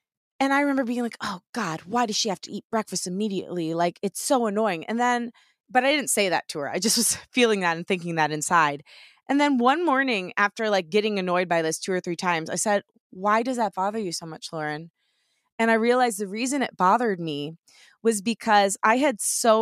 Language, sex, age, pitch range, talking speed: English, female, 20-39, 170-220 Hz, 225 wpm